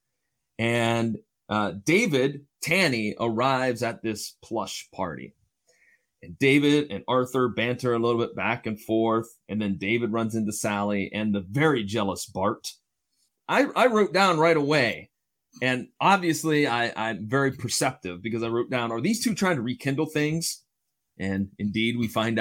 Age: 30-49